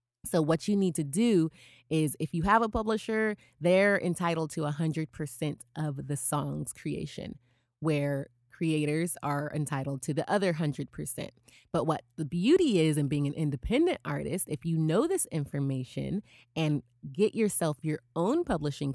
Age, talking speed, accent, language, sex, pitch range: 20-39, 155 wpm, American, English, female, 140-180 Hz